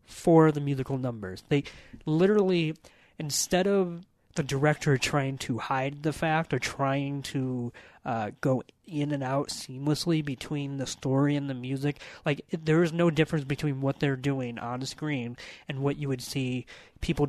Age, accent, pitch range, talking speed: 30-49, American, 125-155 Hz, 165 wpm